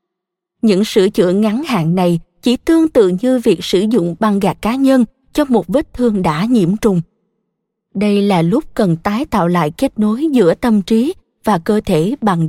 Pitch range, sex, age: 190-240 Hz, female, 20-39